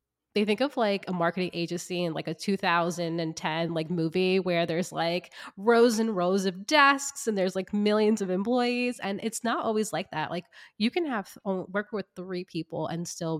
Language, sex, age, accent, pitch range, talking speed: English, female, 20-39, American, 165-200 Hz, 195 wpm